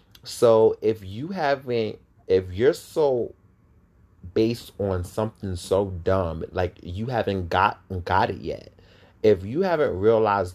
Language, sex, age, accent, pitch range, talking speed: English, male, 30-49, American, 95-110 Hz, 130 wpm